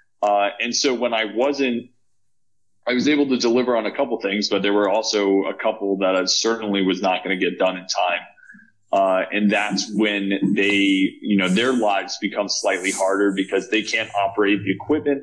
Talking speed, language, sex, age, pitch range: 195 wpm, English, male, 30-49, 95-115 Hz